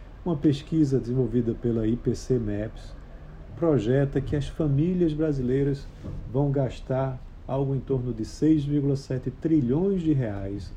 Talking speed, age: 115 wpm, 50-69